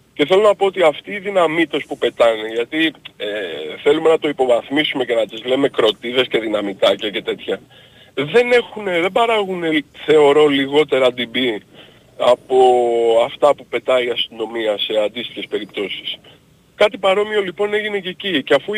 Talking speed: 155 wpm